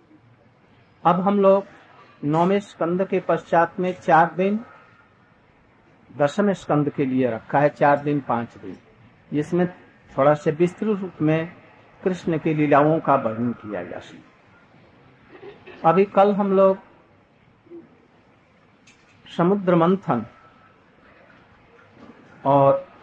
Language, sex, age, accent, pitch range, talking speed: Hindi, male, 50-69, native, 125-195 Hz, 105 wpm